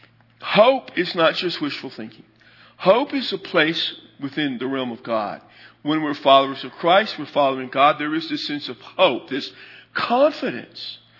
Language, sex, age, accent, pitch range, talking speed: English, male, 50-69, American, 130-190 Hz, 165 wpm